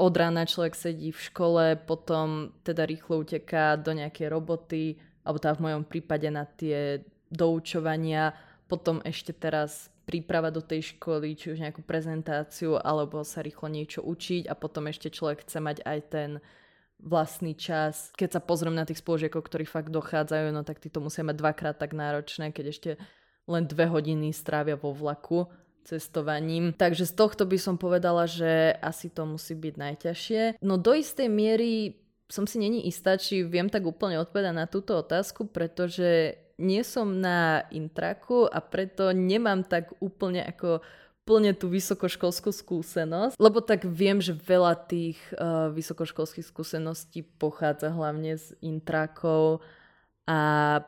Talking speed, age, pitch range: 150 wpm, 20-39, 155-180 Hz